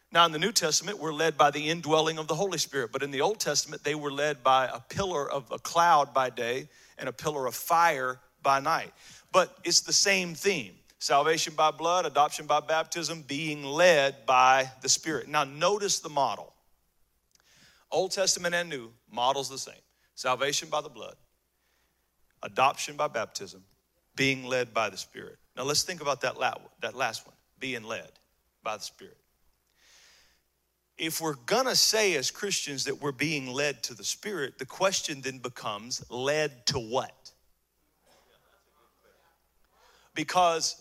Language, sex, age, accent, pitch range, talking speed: English, male, 40-59, American, 135-180 Hz, 160 wpm